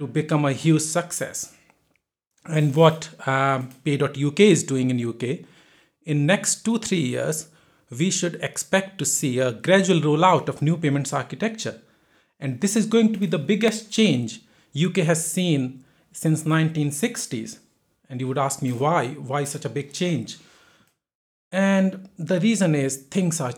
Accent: Indian